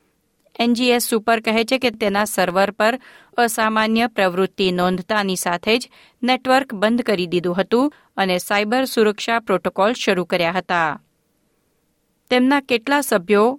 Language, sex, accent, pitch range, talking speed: Gujarati, female, native, 190-240 Hz, 85 wpm